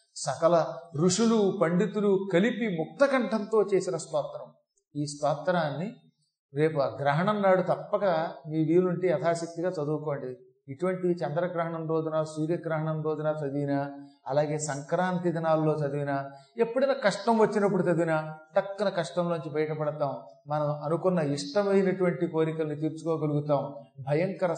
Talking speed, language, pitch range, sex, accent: 100 wpm, Telugu, 150-185 Hz, male, native